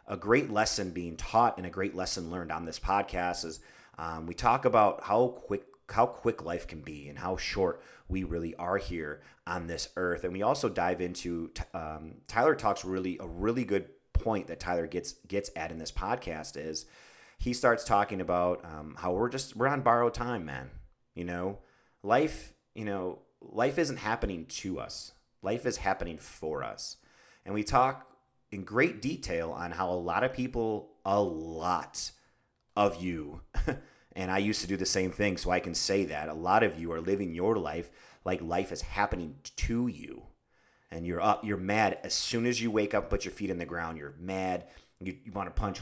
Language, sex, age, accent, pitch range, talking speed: English, male, 30-49, American, 85-105 Hz, 200 wpm